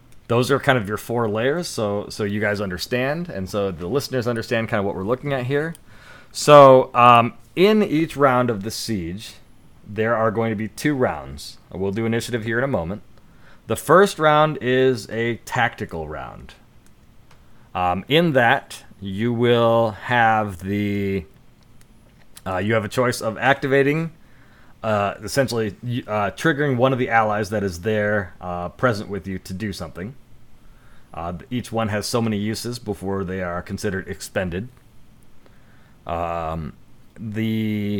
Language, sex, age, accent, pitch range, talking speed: English, male, 30-49, American, 100-125 Hz, 155 wpm